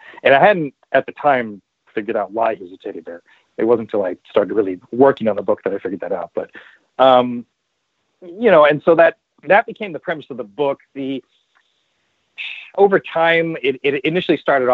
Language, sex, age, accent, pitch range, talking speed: English, male, 30-49, American, 115-145 Hz, 195 wpm